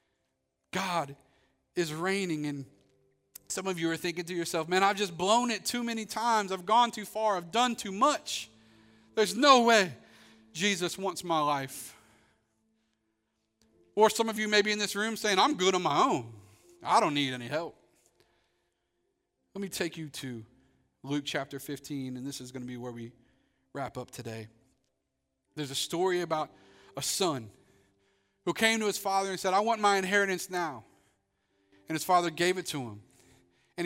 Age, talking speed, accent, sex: 40-59, 175 wpm, American, male